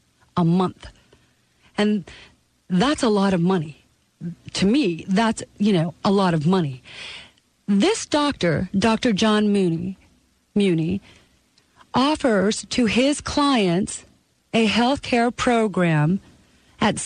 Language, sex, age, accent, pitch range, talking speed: English, female, 40-59, American, 175-225 Hz, 110 wpm